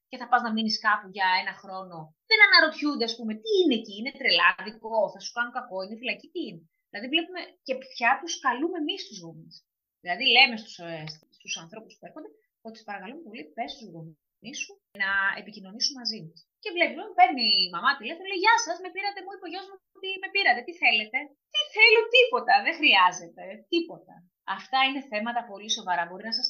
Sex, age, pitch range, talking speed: female, 20-39, 195-290 Hz, 200 wpm